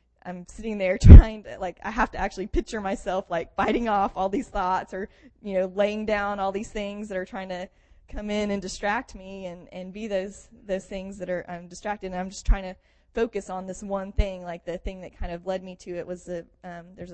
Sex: female